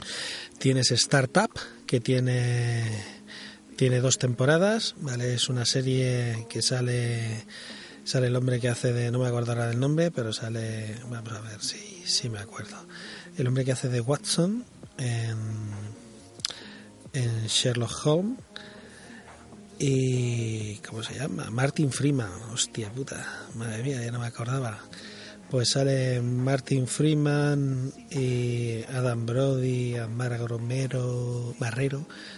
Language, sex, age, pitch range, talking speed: Spanish, male, 30-49, 120-145 Hz, 130 wpm